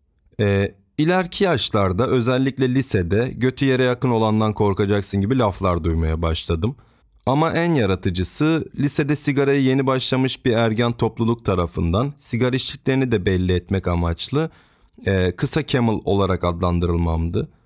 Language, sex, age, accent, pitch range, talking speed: Turkish, male, 30-49, native, 95-120 Hz, 120 wpm